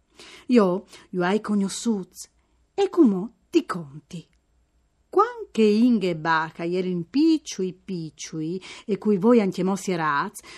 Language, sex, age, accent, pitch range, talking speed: Italian, female, 40-59, native, 180-275 Hz, 125 wpm